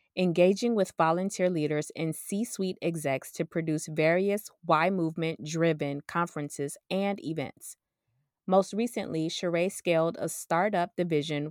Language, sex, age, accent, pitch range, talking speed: English, female, 20-39, American, 160-200 Hz, 110 wpm